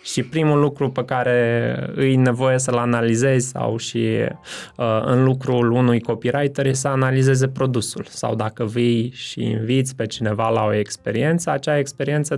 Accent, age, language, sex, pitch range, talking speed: native, 20-39, Romanian, male, 115-140 Hz, 150 wpm